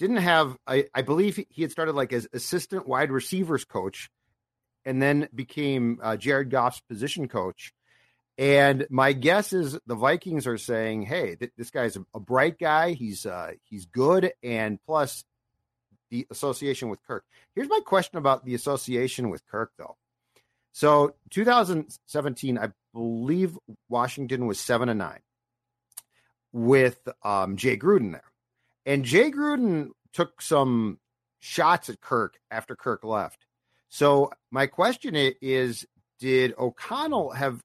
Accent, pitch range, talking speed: American, 120-160 Hz, 140 wpm